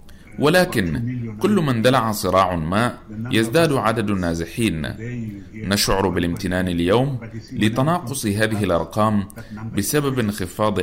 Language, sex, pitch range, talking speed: Arabic, male, 90-120 Hz, 95 wpm